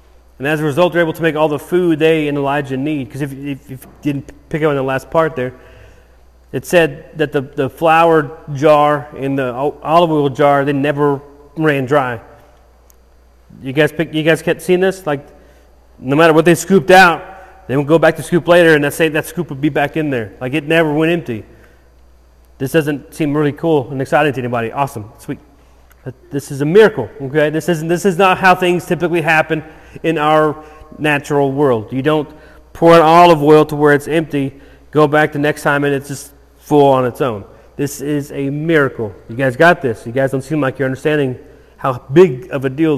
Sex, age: male, 30-49